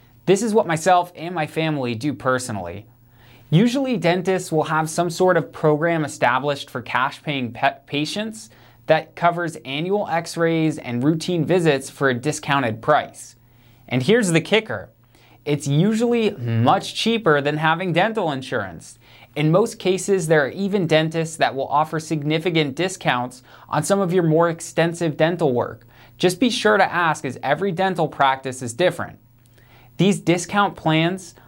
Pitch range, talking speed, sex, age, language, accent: 125-175 Hz, 150 wpm, male, 20-39, English, American